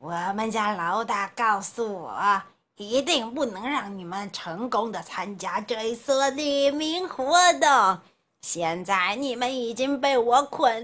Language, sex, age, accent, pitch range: Chinese, female, 30-49, native, 230-335 Hz